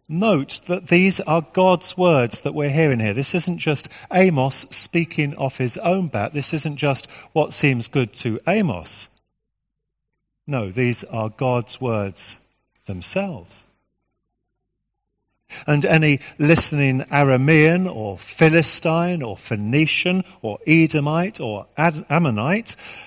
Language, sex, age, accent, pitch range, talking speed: English, male, 40-59, British, 115-160 Hz, 115 wpm